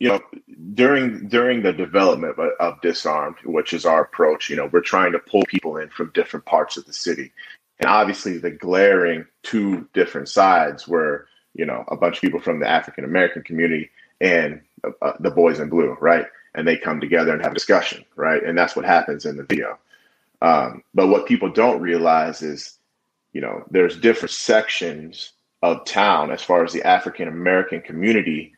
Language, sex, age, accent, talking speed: English, male, 30-49, American, 185 wpm